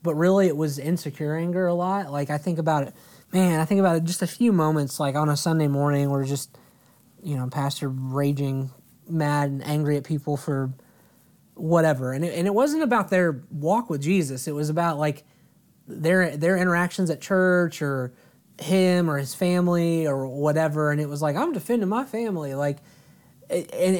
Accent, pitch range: American, 145-175 Hz